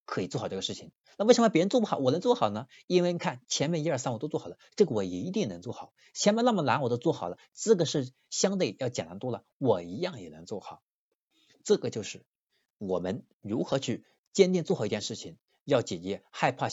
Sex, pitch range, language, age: male, 105-165 Hz, Chinese, 50-69